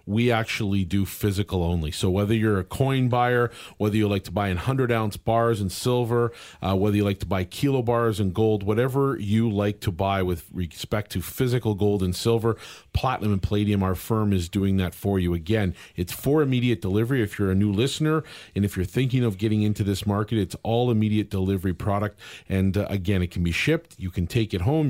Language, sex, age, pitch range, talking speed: English, male, 40-59, 95-115 Hz, 210 wpm